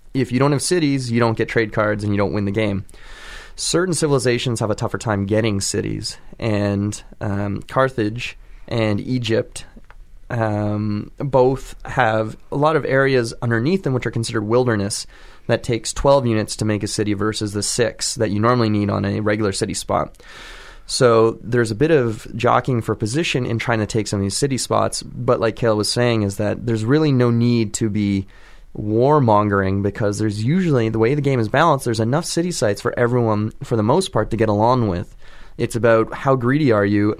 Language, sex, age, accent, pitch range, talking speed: English, male, 20-39, American, 105-125 Hz, 195 wpm